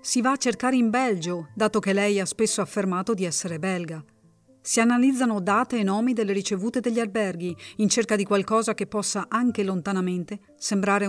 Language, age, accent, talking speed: Italian, 50-69, native, 180 wpm